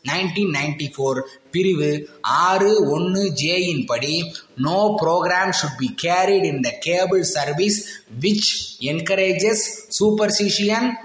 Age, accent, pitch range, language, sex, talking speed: 20-39, native, 145-195 Hz, Tamil, male, 100 wpm